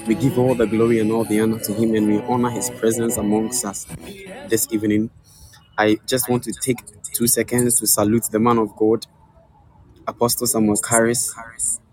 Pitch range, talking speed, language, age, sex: 110-140 Hz, 180 wpm, English, 20-39, male